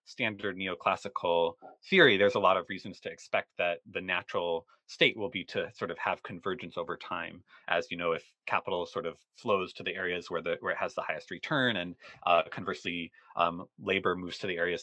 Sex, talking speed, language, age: male, 205 wpm, English, 30-49